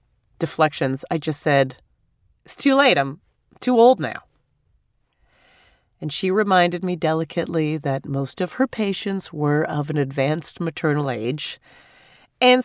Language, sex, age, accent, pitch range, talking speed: English, female, 30-49, American, 155-205 Hz, 135 wpm